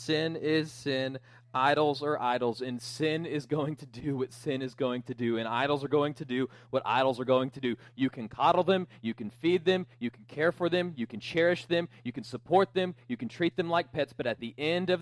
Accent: American